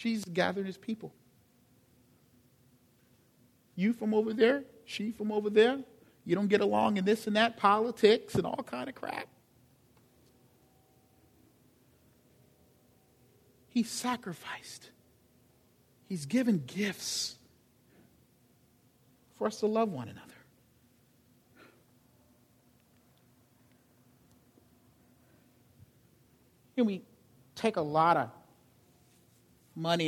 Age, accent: 50-69, American